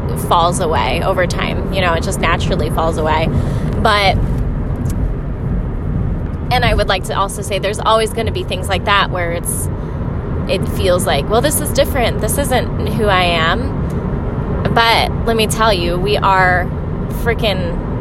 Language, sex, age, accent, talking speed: English, female, 20-39, American, 165 wpm